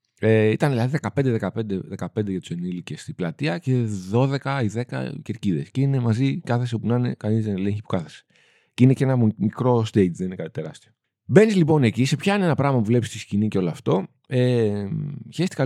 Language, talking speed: Greek, 195 wpm